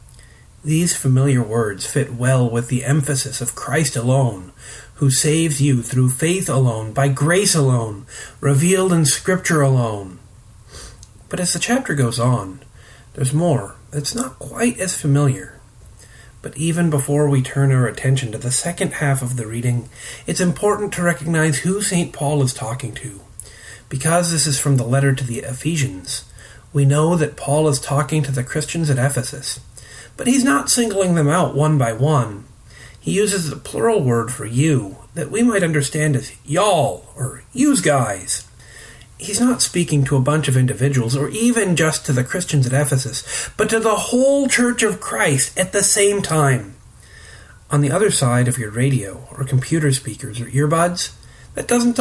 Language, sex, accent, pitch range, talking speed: English, male, American, 120-165 Hz, 170 wpm